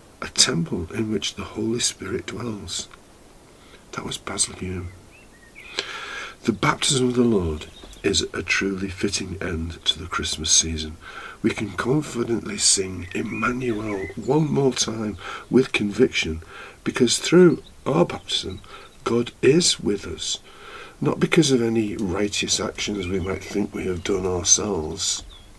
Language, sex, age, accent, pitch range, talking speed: English, male, 50-69, British, 90-115 Hz, 135 wpm